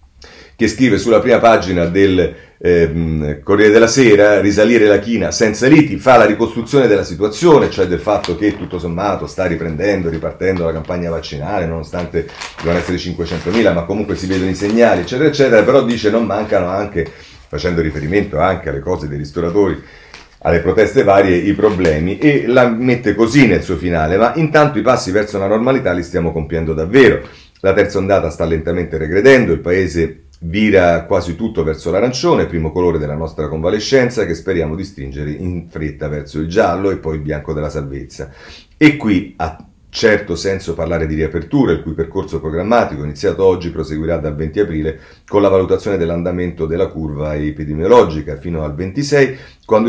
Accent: native